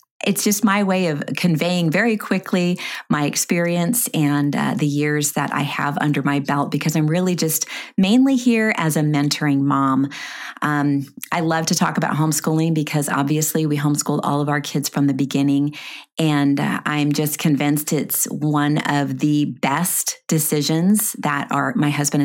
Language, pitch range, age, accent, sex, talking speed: English, 145-165 Hz, 30-49, American, female, 165 wpm